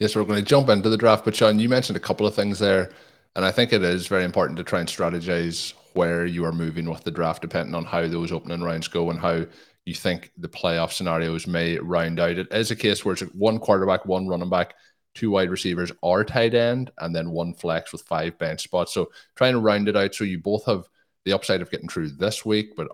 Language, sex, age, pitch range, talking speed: English, male, 20-39, 85-100 Hz, 250 wpm